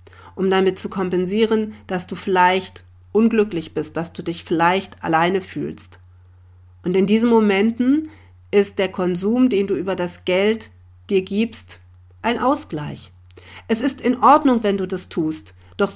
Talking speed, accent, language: 150 wpm, German, German